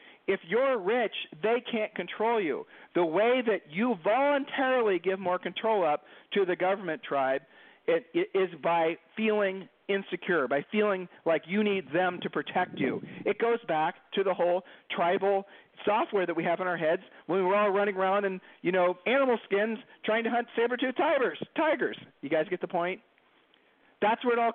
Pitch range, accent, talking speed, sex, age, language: 160-215 Hz, American, 185 wpm, male, 50-69, English